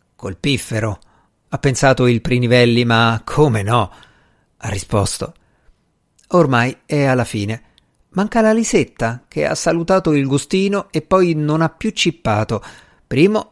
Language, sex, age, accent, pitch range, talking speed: Italian, male, 50-69, native, 115-160 Hz, 130 wpm